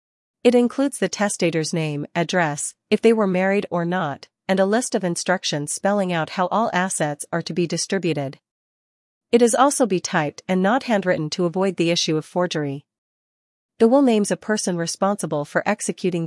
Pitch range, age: 160-200 Hz, 40-59